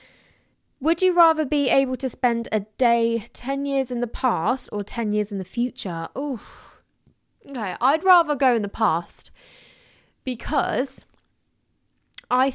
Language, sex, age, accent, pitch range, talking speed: English, female, 20-39, British, 200-260 Hz, 145 wpm